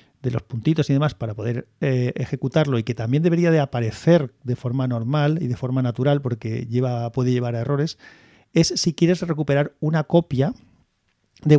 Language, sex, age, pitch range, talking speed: Spanish, male, 40-59, 120-150 Hz, 180 wpm